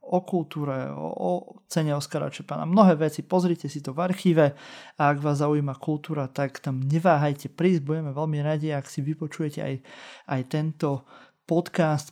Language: Slovak